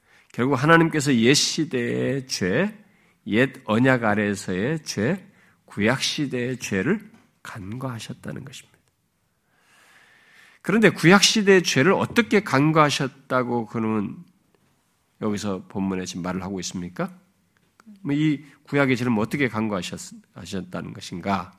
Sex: male